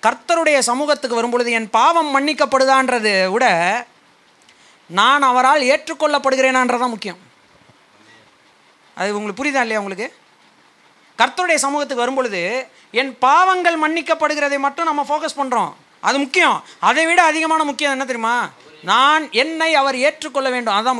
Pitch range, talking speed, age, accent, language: 225-290 Hz, 120 wpm, 30-49, native, Tamil